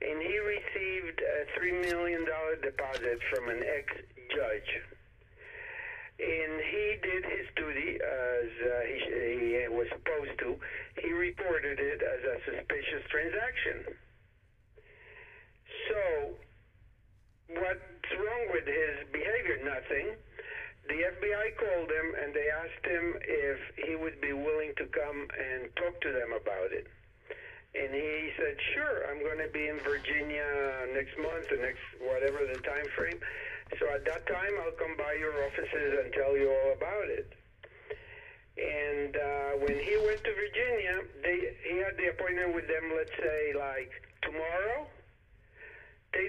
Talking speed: 135 wpm